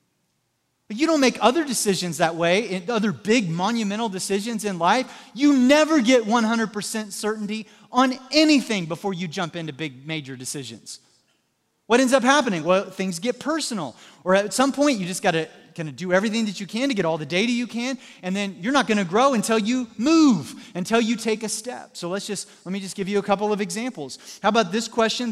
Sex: male